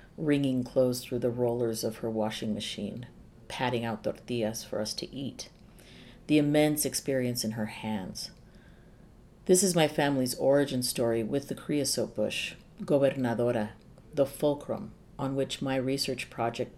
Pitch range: 125-155 Hz